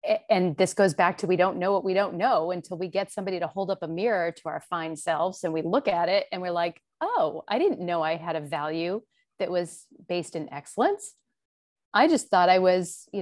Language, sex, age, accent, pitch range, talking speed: English, female, 30-49, American, 175-220 Hz, 235 wpm